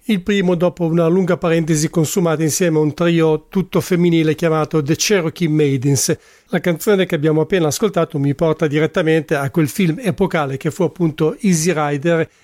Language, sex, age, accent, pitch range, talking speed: English, male, 50-69, Italian, 155-180 Hz, 170 wpm